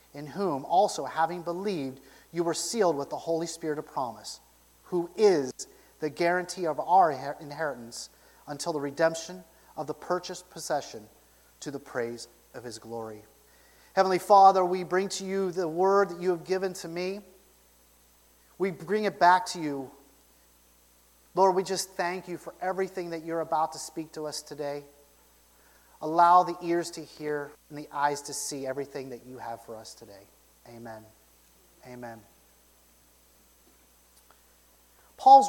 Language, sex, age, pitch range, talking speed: English, male, 30-49, 115-180 Hz, 150 wpm